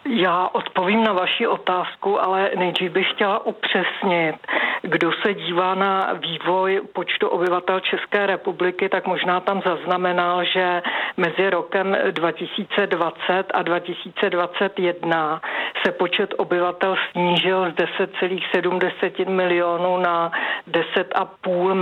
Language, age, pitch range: Czech, 50-69, 175-190 Hz